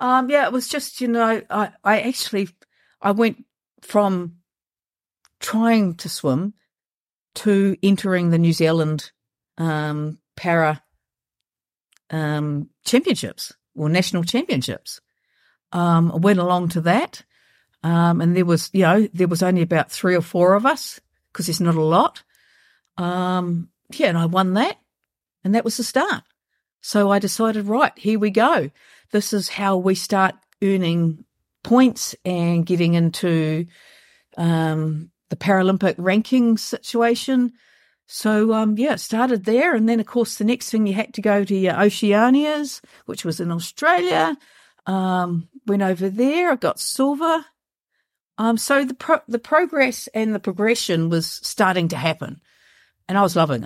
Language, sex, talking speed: English, female, 150 wpm